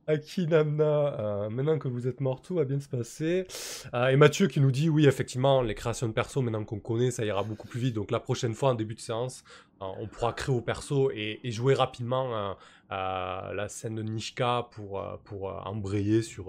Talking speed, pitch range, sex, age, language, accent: 225 wpm, 110-140 Hz, male, 20-39, French, French